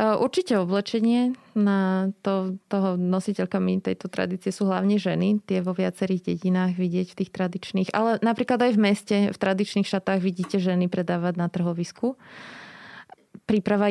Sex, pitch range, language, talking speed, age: female, 180-200 Hz, Slovak, 140 wpm, 20-39